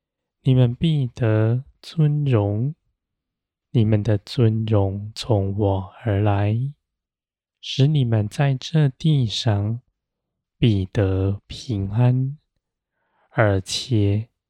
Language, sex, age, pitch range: Chinese, male, 20-39, 100-130 Hz